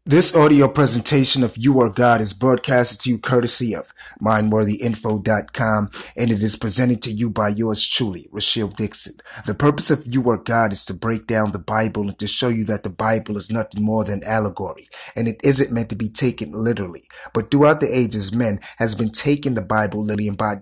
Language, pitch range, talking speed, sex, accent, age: English, 105-125 Hz, 205 wpm, male, American, 30-49